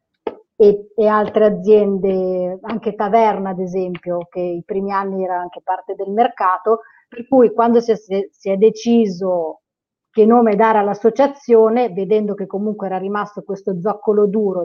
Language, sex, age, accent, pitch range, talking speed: Italian, female, 30-49, native, 180-215 Hz, 150 wpm